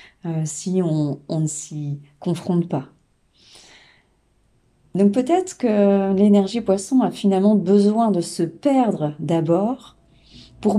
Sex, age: female, 40-59